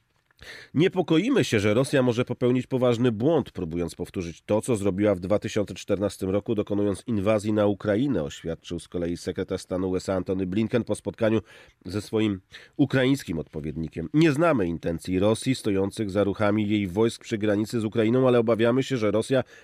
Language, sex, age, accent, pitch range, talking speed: Polish, male, 40-59, native, 90-120 Hz, 160 wpm